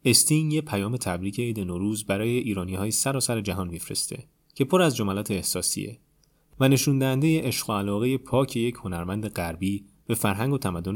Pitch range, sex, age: 95-120 Hz, male, 30-49